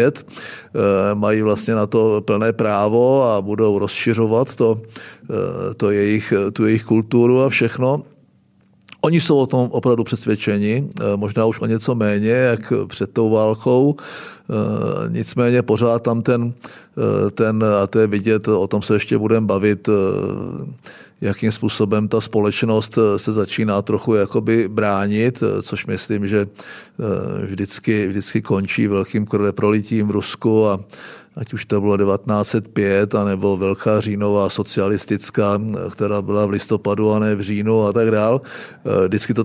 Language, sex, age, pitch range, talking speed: Czech, male, 50-69, 105-130 Hz, 135 wpm